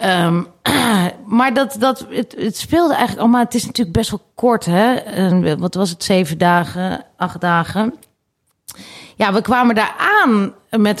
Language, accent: Dutch, Dutch